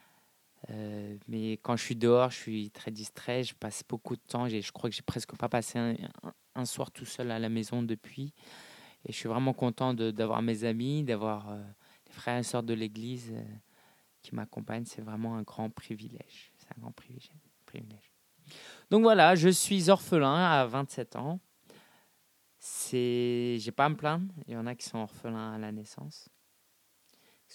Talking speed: 190 wpm